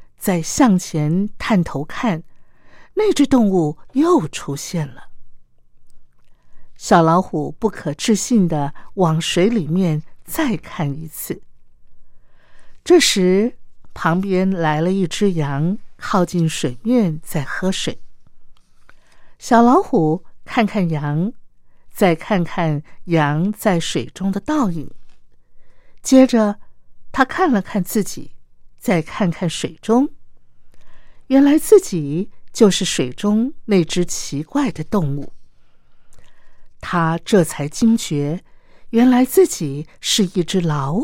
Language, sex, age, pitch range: Chinese, female, 50-69, 150-215 Hz